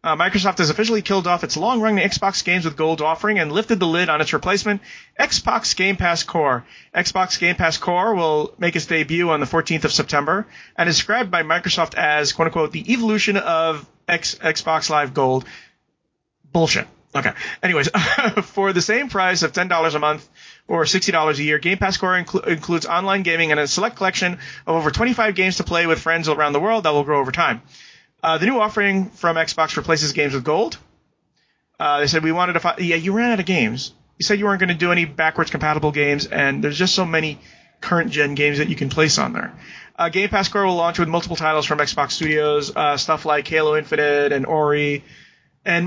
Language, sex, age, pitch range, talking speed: English, male, 30-49, 150-190 Hz, 205 wpm